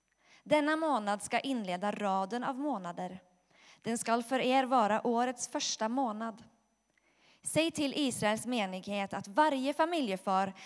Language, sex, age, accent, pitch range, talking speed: Swedish, female, 20-39, native, 195-265 Hz, 125 wpm